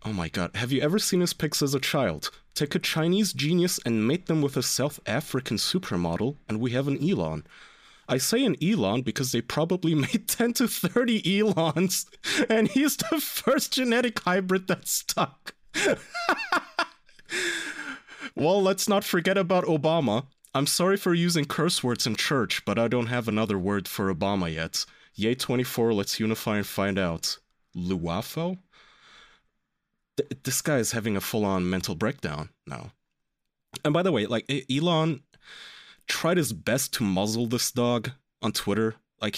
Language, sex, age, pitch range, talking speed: English, male, 30-49, 105-160 Hz, 160 wpm